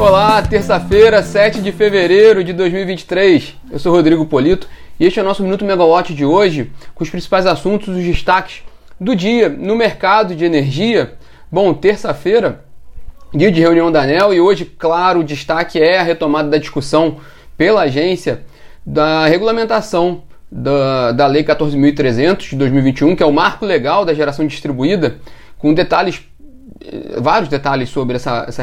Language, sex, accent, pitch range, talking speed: Portuguese, male, Brazilian, 140-190 Hz, 155 wpm